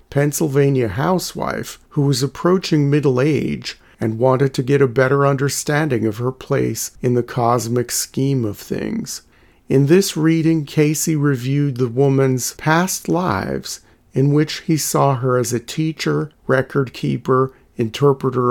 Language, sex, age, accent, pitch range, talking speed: English, male, 40-59, American, 125-150 Hz, 140 wpm